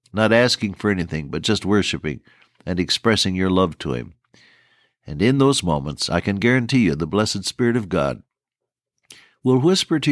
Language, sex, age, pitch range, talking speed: English, male, 60-79, 90-125 Hz, 170 wpm